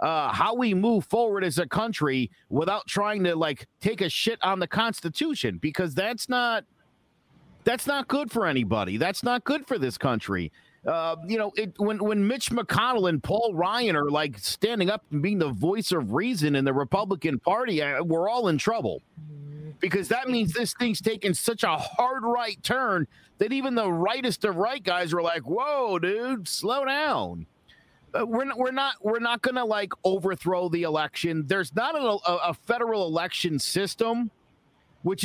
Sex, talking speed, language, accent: male, 180 wpm, English, American